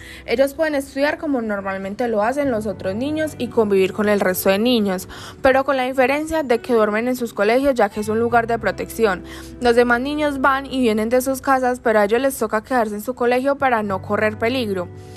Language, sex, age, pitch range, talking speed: Spanish, female, 10-29, 215-270 Hz, 220 wpm